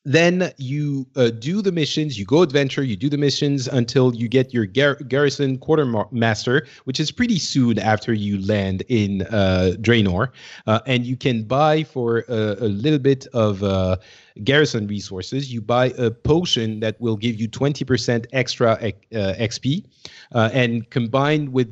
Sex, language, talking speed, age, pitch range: male, English, 155 wpm, 40-59, 110-135 Hz